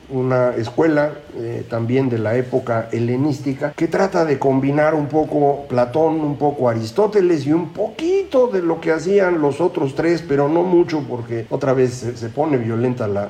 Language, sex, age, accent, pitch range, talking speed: Spanish, male, 50-69, Mexican, 120-170 Hz, 170 wpm